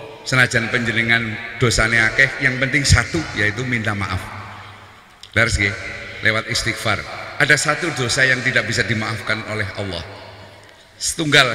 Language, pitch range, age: Indonesian, 100-130 Hz, 50-69